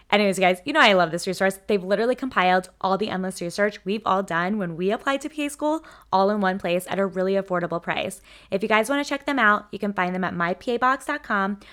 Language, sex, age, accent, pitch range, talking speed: English, female, 20-39, American, 180-225 Hz, 245 wpm